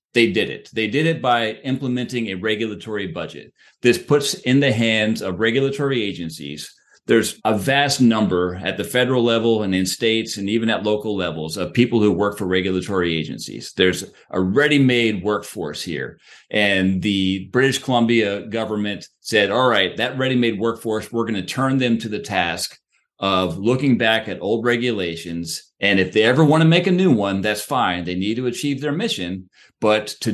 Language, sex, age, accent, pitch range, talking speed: English, male, 40-59, American, 100-125 Hz, 180 wpm